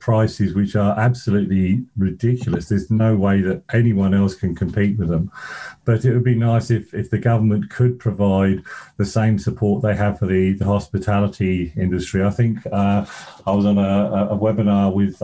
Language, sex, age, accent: English, male, 40-59, British